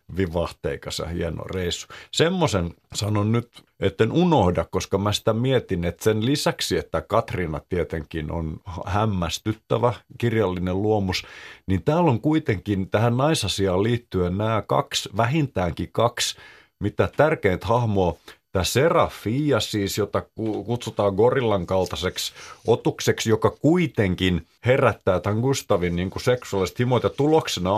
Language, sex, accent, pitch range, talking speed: Finnish, male, native, 95-125 Hz, 120 wpm